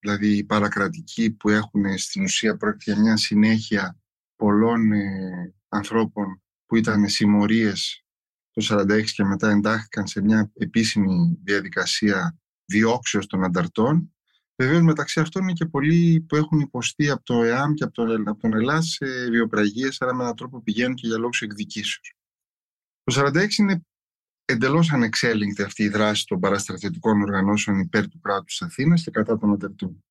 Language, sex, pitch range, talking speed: Greek, male, 105-145 Hz, 150 wpm